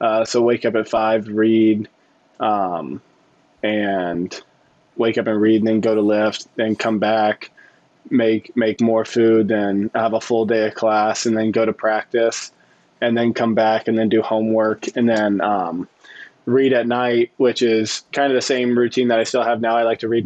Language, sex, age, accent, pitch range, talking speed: English, male, 20-39, American, 110-115 Hz, 200 wpm